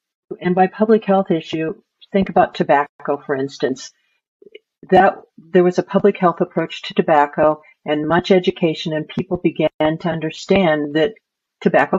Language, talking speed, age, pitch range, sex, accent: English, 145 wpm, 50-69, 155-200 Hz, female, American